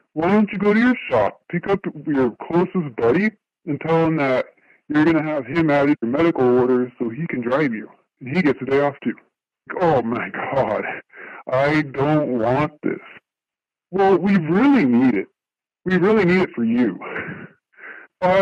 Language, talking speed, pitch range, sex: English, 180 wpm, 140-180 Hz, female